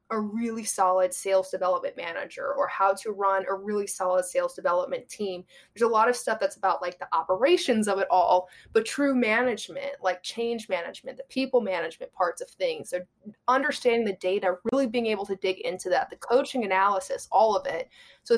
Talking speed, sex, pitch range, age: 195 wpm, female, 190-265 Hz, 20-39